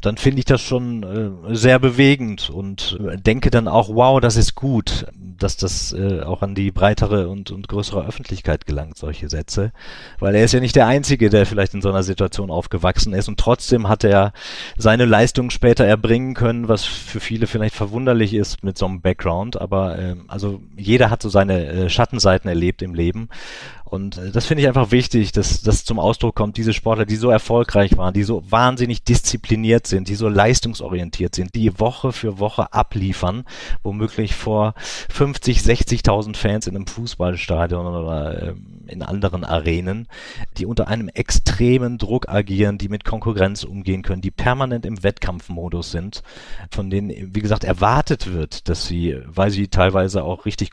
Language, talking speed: German, 170 wpm